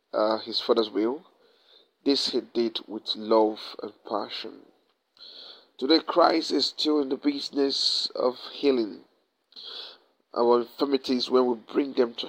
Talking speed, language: 130 wpm, English